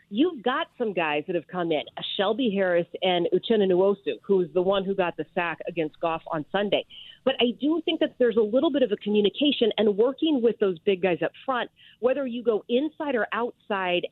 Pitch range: 185-255 Hz